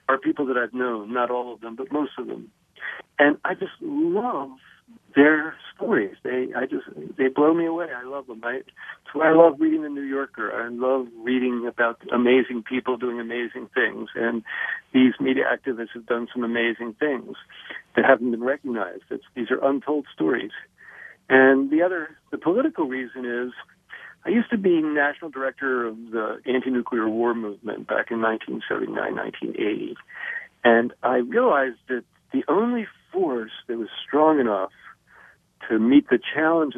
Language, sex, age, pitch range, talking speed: English, male, 50-69, 120-155 Hz, 170 wpm